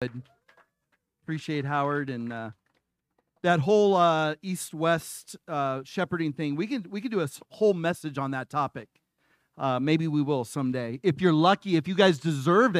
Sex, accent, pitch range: male, American, 180-225 Hz